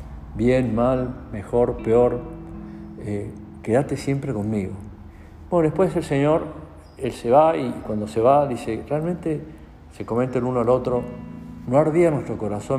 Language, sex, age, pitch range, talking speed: Spanish, male, 50-69, 100-125 Hz, 145 wpm